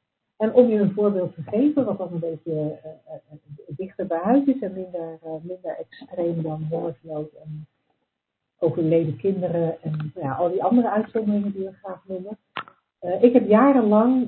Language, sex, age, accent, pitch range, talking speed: Dutch, female, 60-79, Dutch, 160-225 Hz, 175 wpm